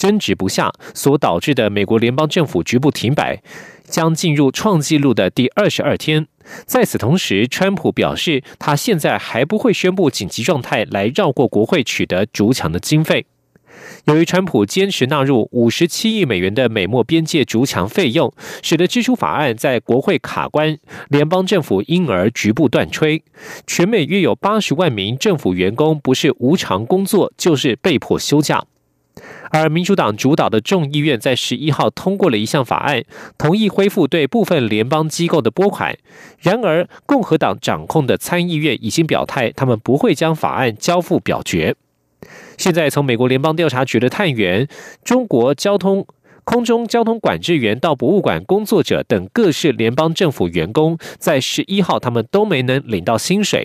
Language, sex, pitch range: German, male, 130-190 Hz